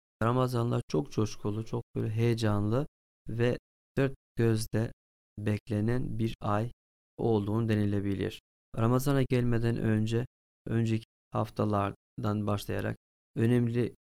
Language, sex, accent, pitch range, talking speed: Turkish, male, native, 105-125 Hz, 85 wpm